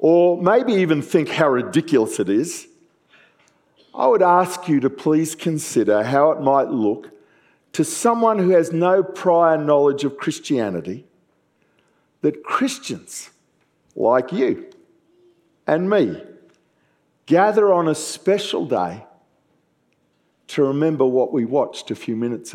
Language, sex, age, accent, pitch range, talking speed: English, male, 50-69, Australian, 150-205 Hz, 125 wpm